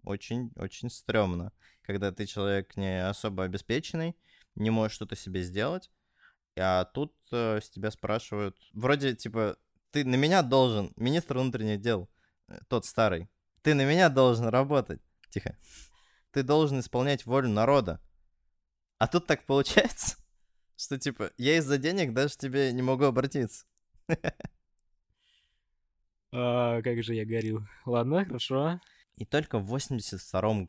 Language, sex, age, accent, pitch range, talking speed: Russian, male, 20-39, native, 95-130 Hz, 130 wpm